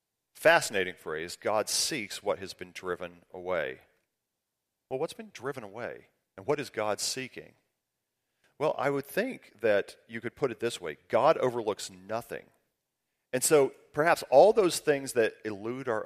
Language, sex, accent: English, male, American